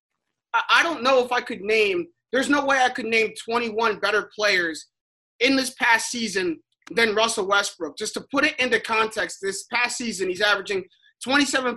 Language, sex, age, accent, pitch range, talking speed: English, male, 30-49, American, 205-255 Hz, 180 wpm